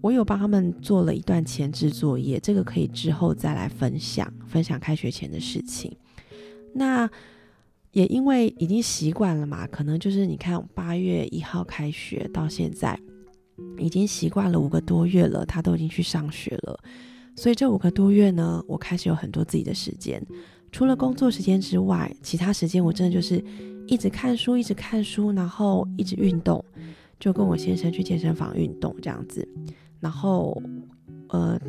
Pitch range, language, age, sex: 160-200 Hz, Chinese, 20-39, female